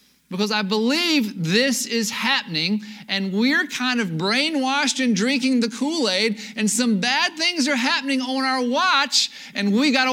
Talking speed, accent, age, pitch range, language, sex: 165 wpm, American, 40-59, 205-255 Hz, English, male